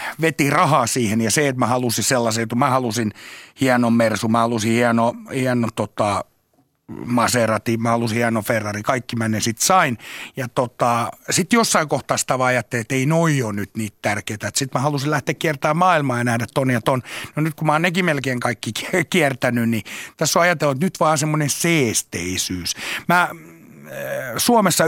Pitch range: 115-160 Hz